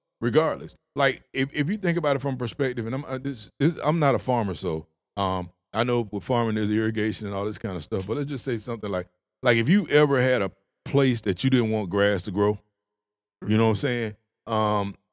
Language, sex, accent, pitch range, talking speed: English, male, American, 105-135 Hz, 235 wpm